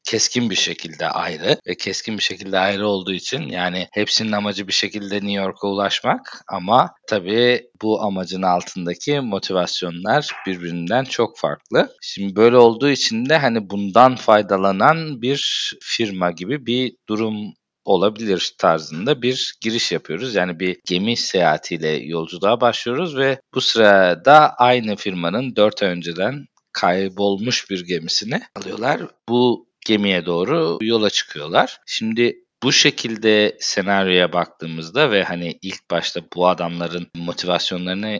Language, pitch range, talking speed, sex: Turkish, 90-115 Hz, 125 wpm, male